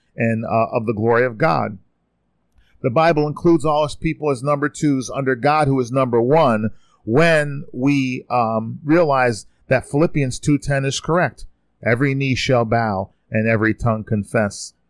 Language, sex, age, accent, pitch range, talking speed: English, male, 40-59, American, 105-150 Hz, 155 wpm